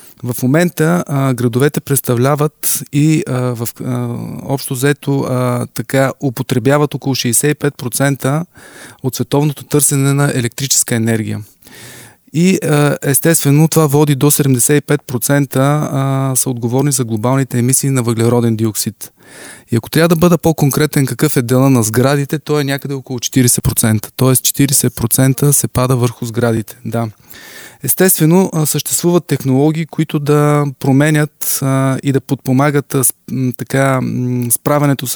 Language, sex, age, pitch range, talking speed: Bulgarian, male, 20-39, 125-145 Hz, 120 wpm